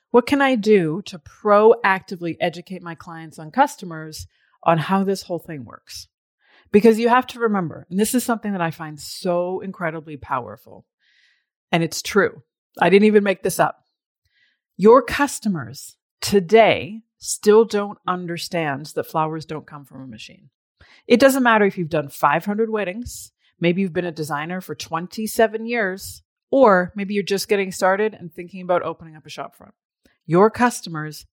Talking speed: 165 wpm